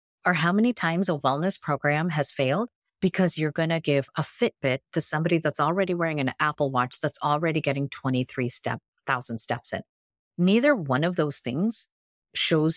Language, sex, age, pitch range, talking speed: English, female, 40-59, 130-165 Hz, 175 wpm